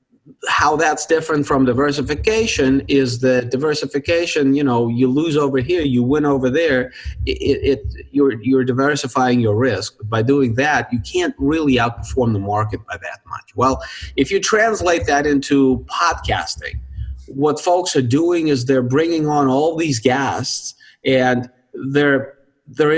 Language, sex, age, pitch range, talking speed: English, male, 30-49, 125-155 Hz, 145 wpm